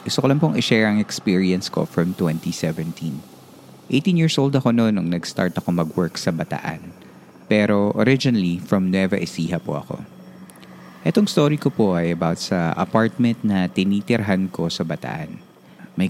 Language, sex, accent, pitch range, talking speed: Filipino, male, native, 85-115 Hz, 155 wpm